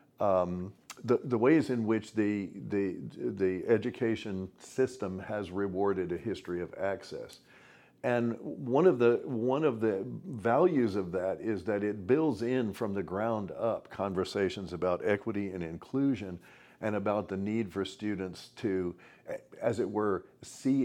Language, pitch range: English, 95-115 Hz